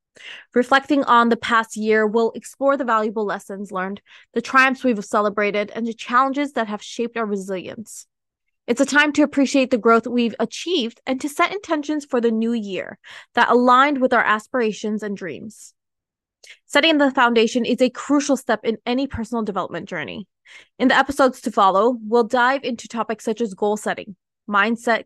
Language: English